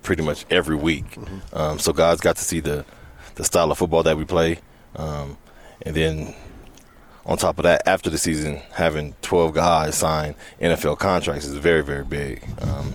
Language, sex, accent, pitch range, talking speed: English, male, American, 75-85 Hz, 180 wpm